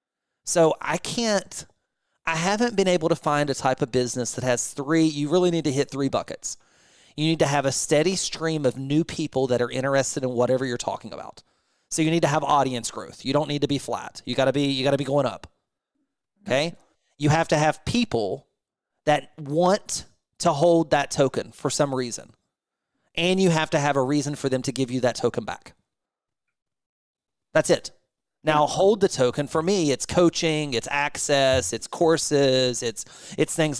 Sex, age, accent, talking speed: male, 30-49, American, 195 wpm